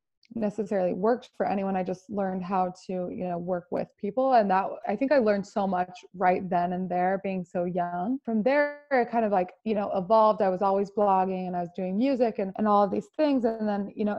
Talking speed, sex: 240 wpm, female